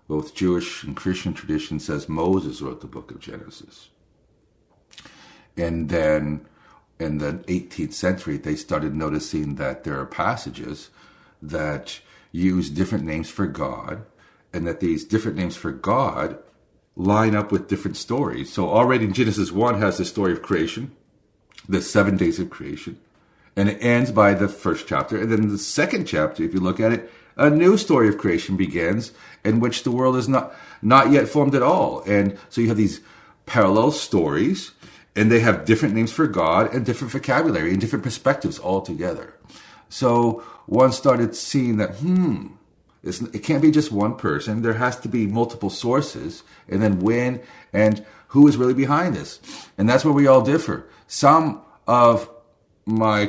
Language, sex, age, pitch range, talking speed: English, male, 50-69, 95-120 Hz, 170 wpm